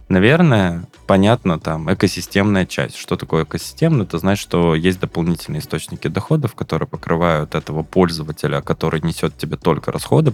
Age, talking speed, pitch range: 20-39, 140 wpm, 85-105 Hz